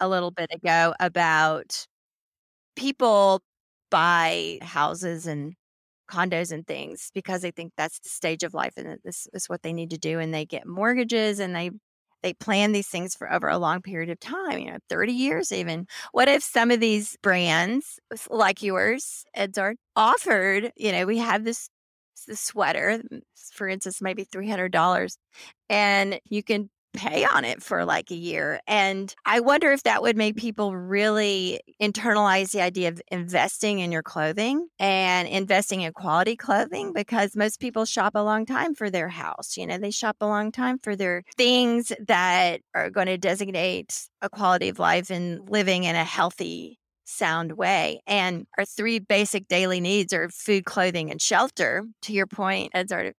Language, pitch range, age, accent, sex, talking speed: English, 175-215 Hz, 30-49, American, female, 180 wpm